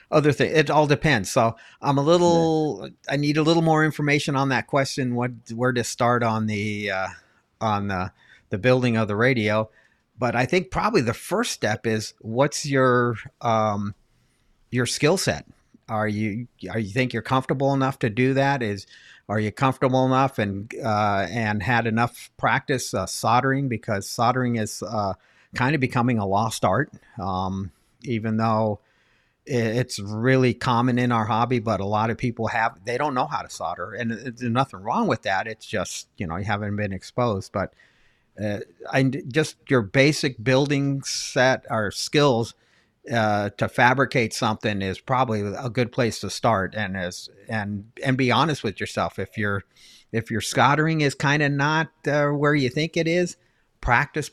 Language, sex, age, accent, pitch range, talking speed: English, male, 50-69, American, 110-135 Hz, 175 wpm